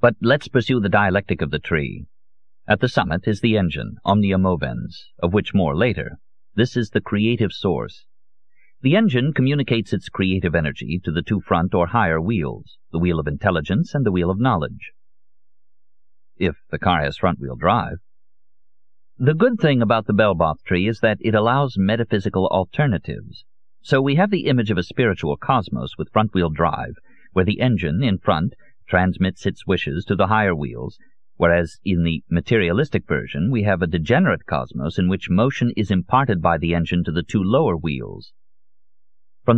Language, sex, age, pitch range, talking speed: English, male, 50-69, 85-110 Hz, 175 wpm